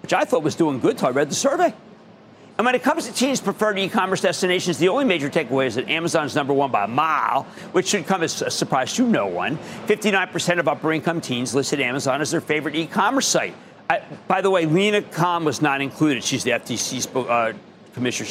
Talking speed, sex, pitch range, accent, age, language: 220 wpm, male, 135-200 Hz, American, 50-69, English